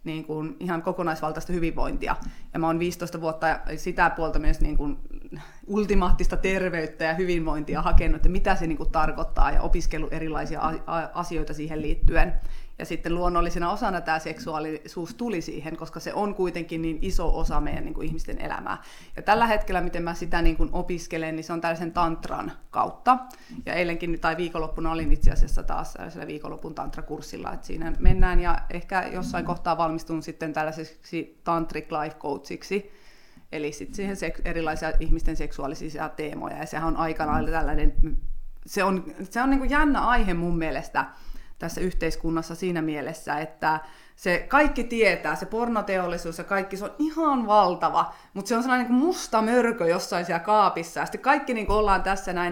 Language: Finnish